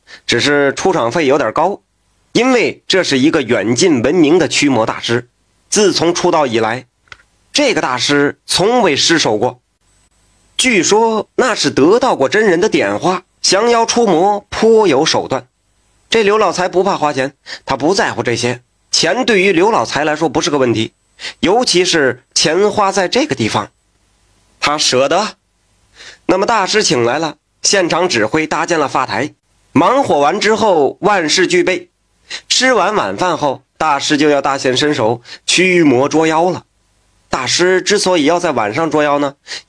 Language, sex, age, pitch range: Chinese, male, 30-49, 125-190 Hz